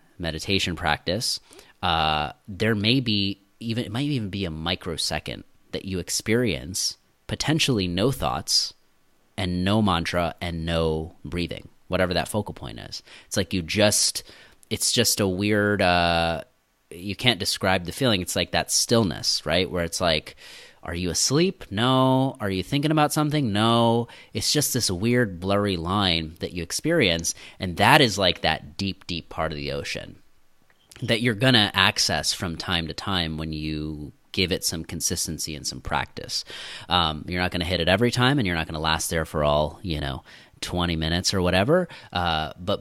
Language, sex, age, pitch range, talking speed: English, male, 30-49, 80-110 Hz, 175 wpm